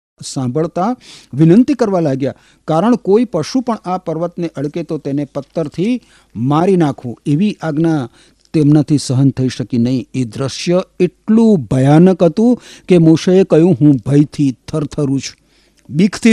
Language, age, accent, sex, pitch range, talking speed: Gujarati, 50-69, native, male, 135-185 Hz, 75 wpm